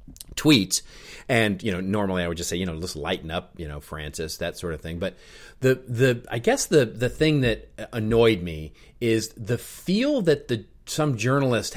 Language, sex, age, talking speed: English, male, 40-59, 200 wpm